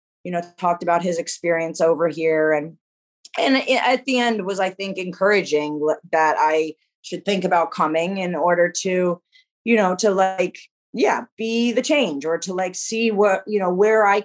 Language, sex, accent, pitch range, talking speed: English, female, American, 155-185 Hz, 180 wpm